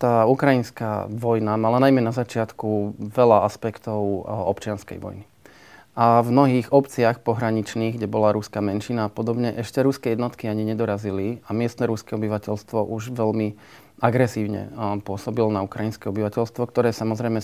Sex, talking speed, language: male, 140 wpm, Slovak